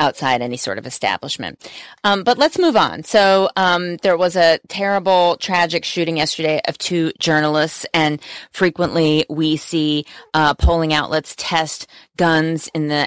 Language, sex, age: English, female, 30-49